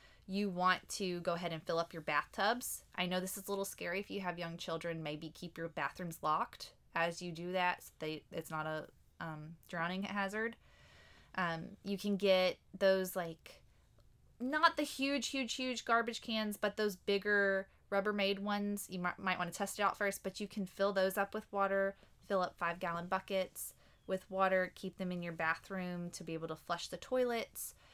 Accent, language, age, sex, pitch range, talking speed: American, English, 20-39, female, 170-200 Hz, 195 wpm